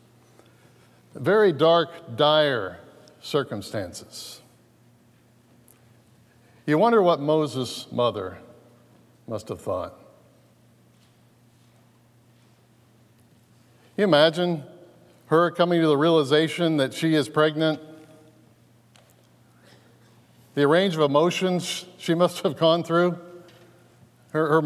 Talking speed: 85 wpm